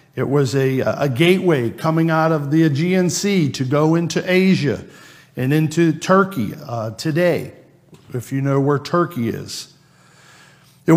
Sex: male